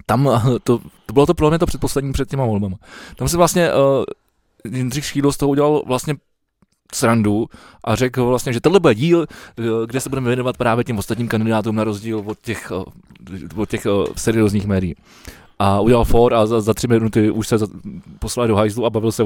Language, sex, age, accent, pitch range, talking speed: Czech, male, 20-39, native, 110-145 Hz, 200 wpm